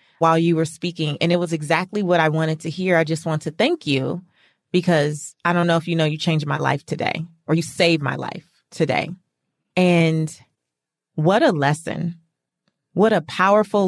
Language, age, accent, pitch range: English, 30-49, American, 160-180 Hz